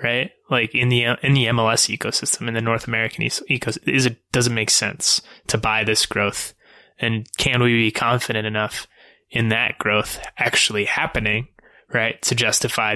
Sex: male